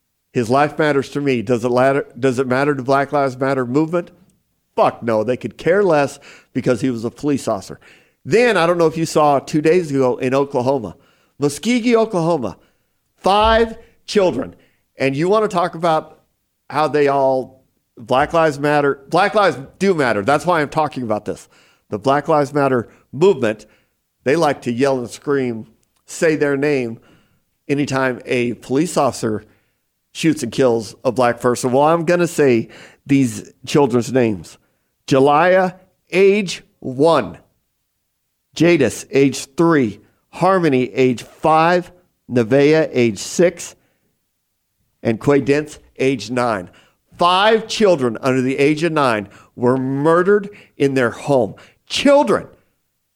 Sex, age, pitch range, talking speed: male, 50-69, 125-165 Hz, 140 wpm